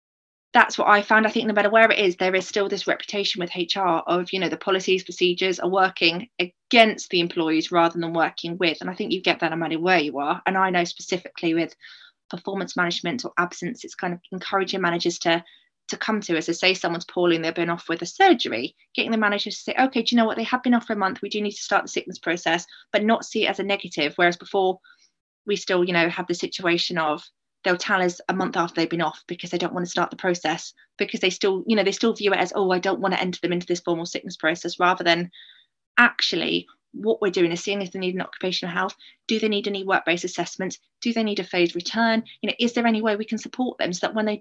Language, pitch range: English, 175-210 Hz